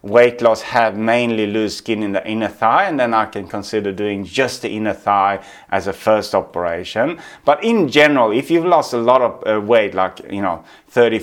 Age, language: 30-49, English